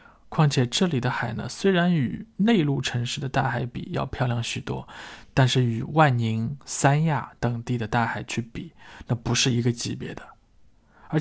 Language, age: Chinese, 20-39